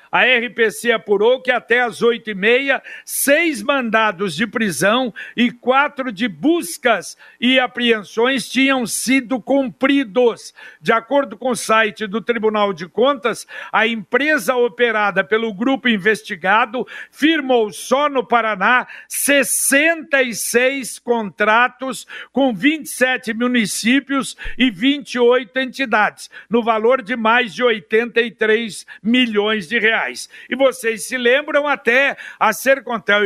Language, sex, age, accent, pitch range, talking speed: Portuguese, male, 60-79, Brazilian, 215-265 Hz, 115 wpm